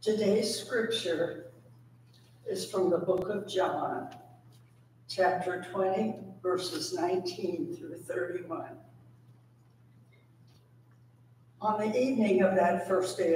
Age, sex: 60-79, female